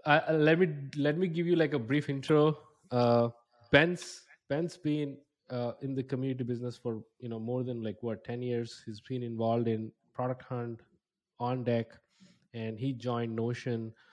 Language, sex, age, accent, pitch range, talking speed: English, male, 20-39, Indian, 115-135 Hz, 175 wpm